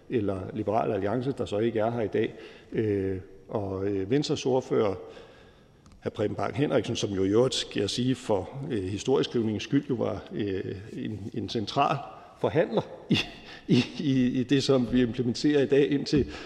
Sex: male